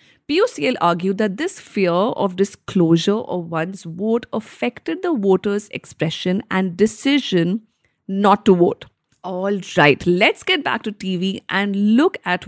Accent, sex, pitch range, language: Indian, female, 180-240 Hz, English